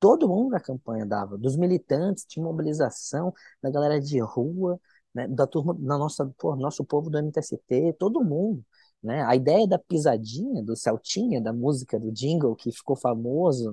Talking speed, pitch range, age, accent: 170 wpm, 125-175 Hz, 20-39, Brazilian